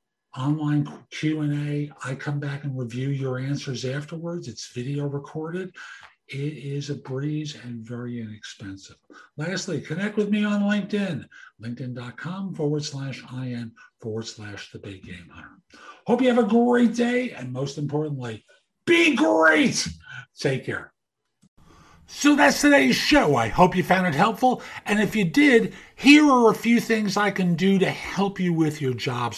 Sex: male